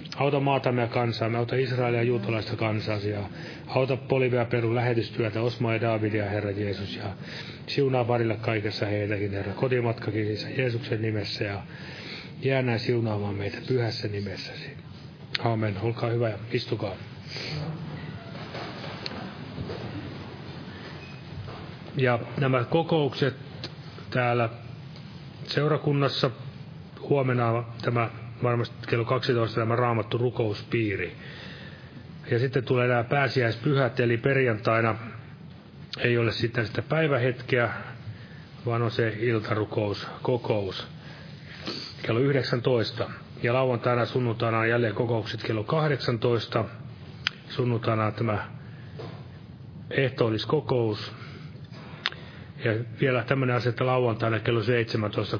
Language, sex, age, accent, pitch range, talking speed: Finnish, male, 30-49, native, 115-135 Hz, 95 wpm